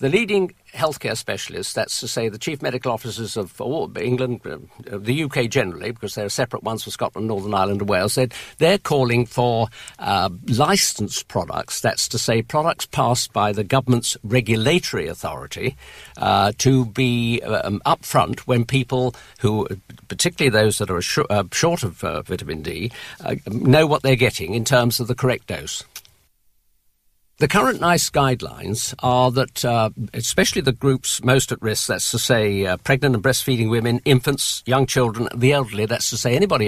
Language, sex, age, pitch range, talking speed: English, male, 50-69, 105-130 Hz, 170 wpm